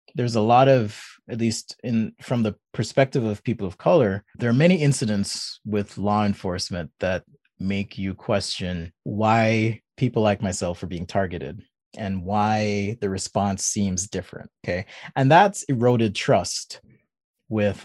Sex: male